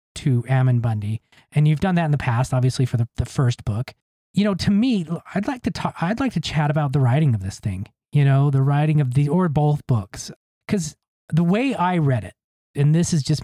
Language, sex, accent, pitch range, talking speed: English, male, American, 125-160 Hz, 235 wpm